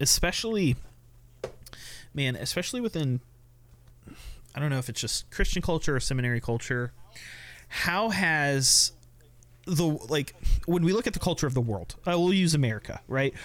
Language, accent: English, American